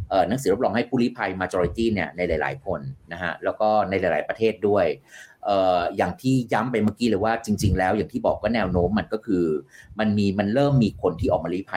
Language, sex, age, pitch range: Thai, male, 30-49, 90-120 Hz